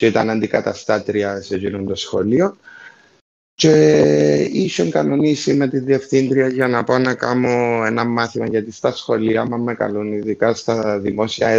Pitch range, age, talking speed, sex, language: 95-135 Hz, 30-49, 145 wpm, male, Greek